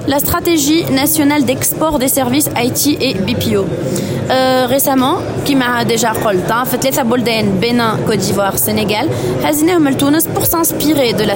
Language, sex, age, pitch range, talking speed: Arabic, female, 20-39, 220-305 Hz, 160 wpm